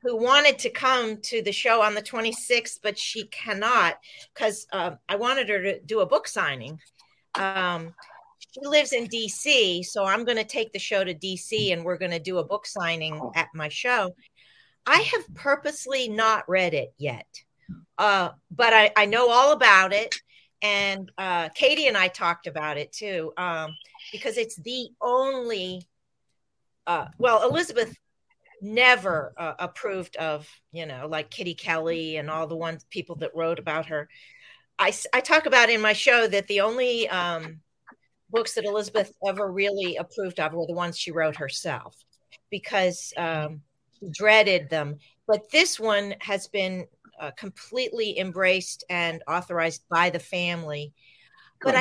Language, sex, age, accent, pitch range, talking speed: English, female, 50-69, American, 170-240 Hz, 160 wpm